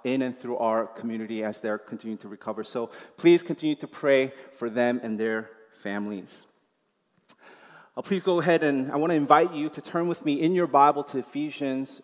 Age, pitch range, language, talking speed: 30-49, 125-160 Hz, English, 195 wpm